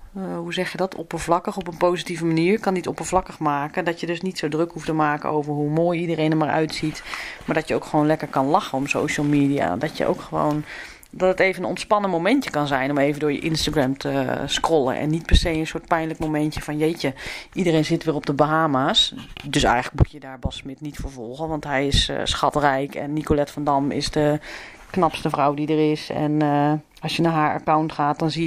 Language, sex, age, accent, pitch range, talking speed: Dutch, female, 30-49, Dutch, 145-170 Hz, 235 wpm